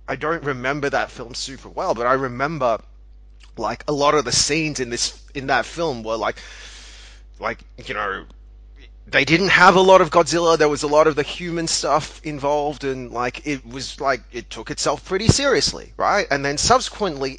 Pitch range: 125-165 Hz